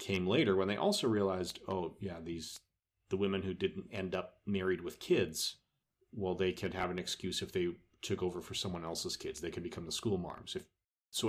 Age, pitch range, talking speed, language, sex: 30-49, 90-105 Hz, 205 wpm, English, male